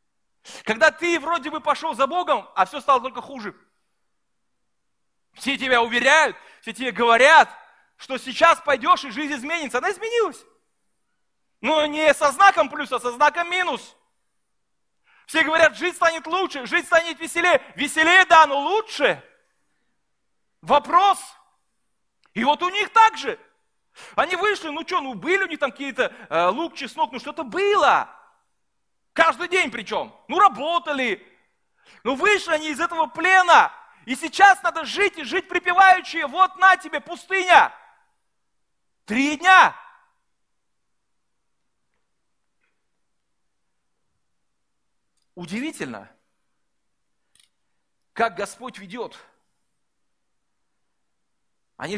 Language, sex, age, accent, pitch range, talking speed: Russian, male, 40-59, native, 245-355 Hz, 115 wpm